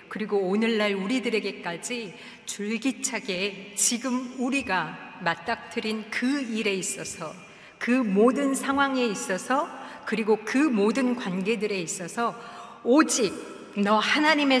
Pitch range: 195-255 Hz